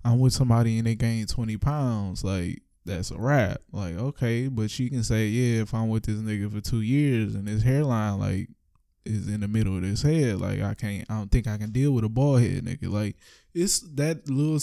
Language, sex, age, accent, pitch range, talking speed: English, male, 20-39, American, 105-135 Hz, 230 wpm